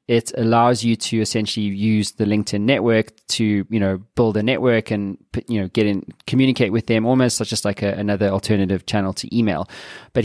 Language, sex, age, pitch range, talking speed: English, male, 20-39, 110-130 Hz, 200 wpm